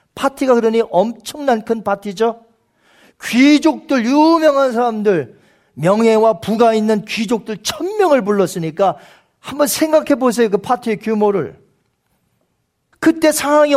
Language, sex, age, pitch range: Korean, male, 40-59, 200-260 Hz